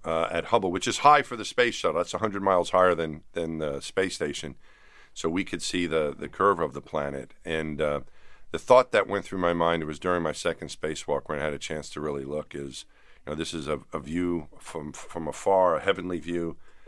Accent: American